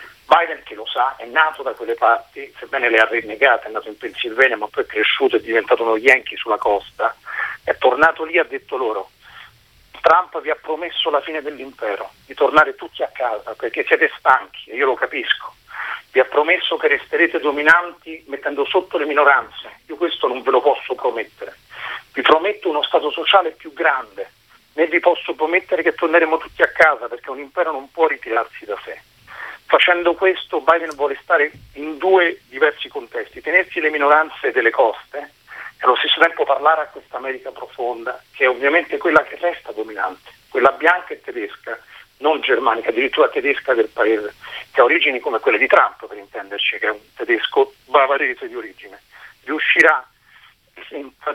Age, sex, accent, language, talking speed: 40-59, male, native, Italian, 180 wpm